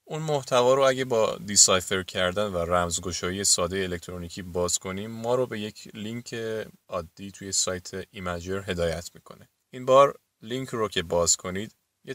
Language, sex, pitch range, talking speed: Persian, male, 95-120 Hz, 160 wpm